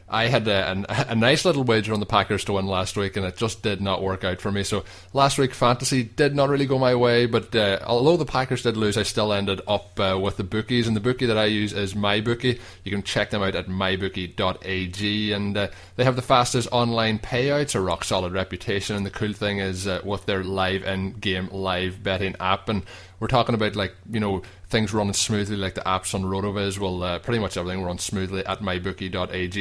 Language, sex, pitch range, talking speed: English, male, 95-110 Hz, 230 wpm